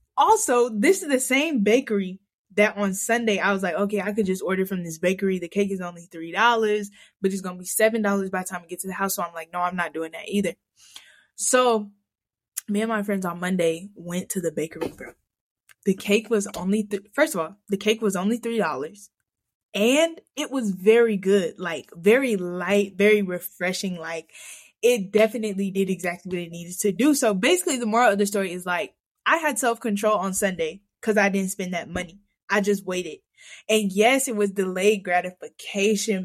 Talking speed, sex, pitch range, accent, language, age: 200 wpm, female, 185-220 Hz, American, English, 10-29